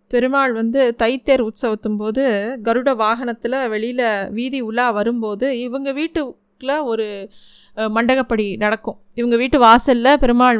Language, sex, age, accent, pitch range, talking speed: Tamil, female, 20-39, native, 215-250 Hz, 115 wpm